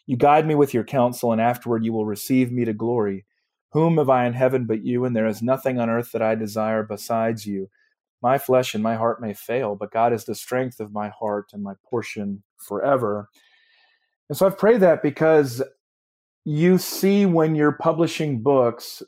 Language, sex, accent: English, male, American